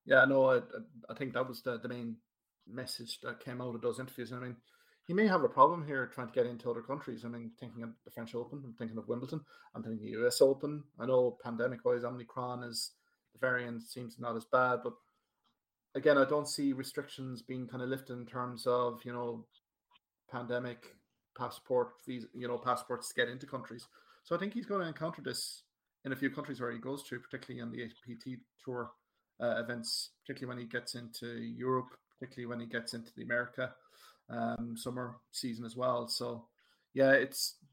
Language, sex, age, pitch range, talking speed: English, male, 30-49, 120-130 Hz, 210 wpm